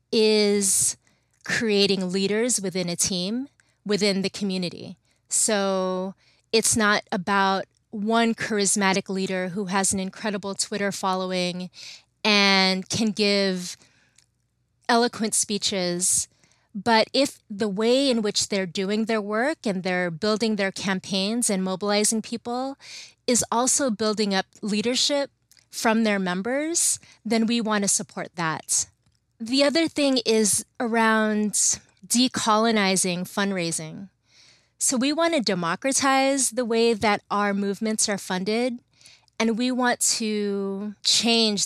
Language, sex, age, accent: English, female, 30-49, American